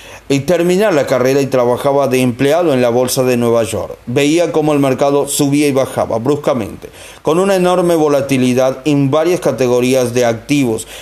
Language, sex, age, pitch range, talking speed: Spanish, male, 40-59, 130-160 Hz, 170 wpm